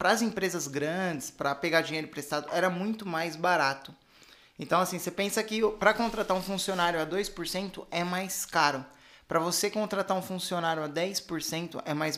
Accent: Brazilian